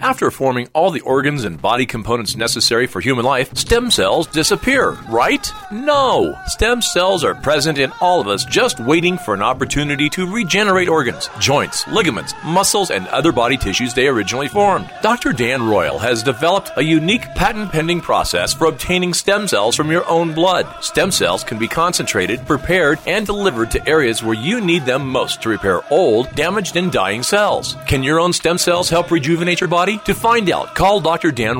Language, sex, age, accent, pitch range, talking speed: English, male, 40-59, American, 135-190 Hz, 185 wpm